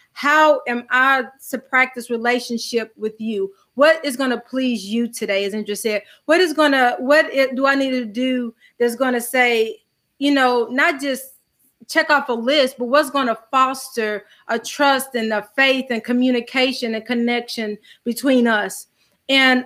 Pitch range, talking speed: 235-275 Hz, 170 wpm